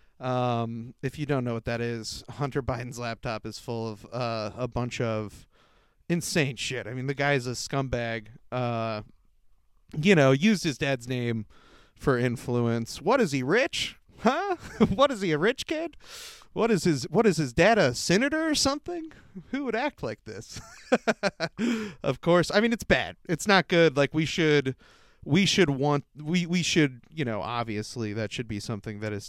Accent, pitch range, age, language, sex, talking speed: American, 115-160 Hz, 30-49, English, male, 180 wpm